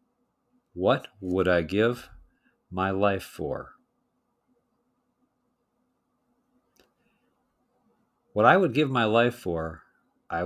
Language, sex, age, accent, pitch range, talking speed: English, male, 50-69, American, 95-130 Hz, 85 wpm